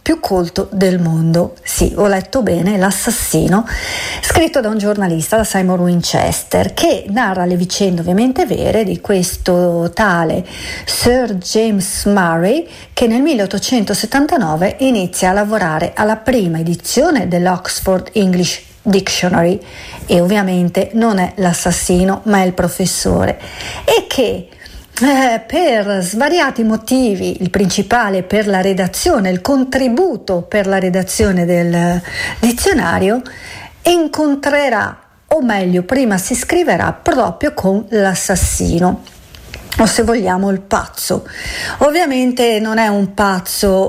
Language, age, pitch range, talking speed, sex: Italian, 50-69, 185-235 Hz, 120 wpm, female